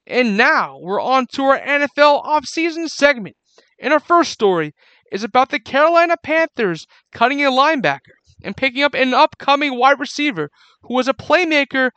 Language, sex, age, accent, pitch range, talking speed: English, male, 30-49, American, 215-270 Hz, 160 wpm